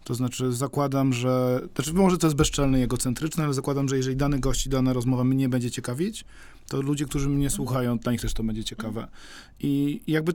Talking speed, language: 215 wpm, Polish